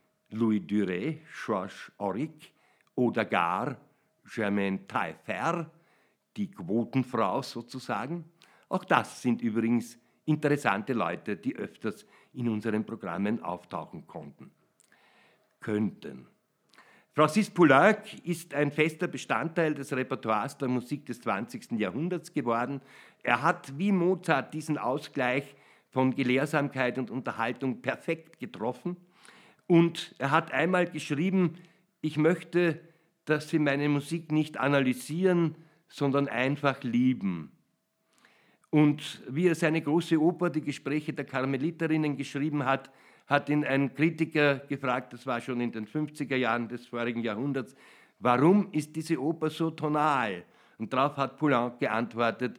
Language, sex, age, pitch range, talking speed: German, male, 60-79, 120-160 Hz, 120 wpm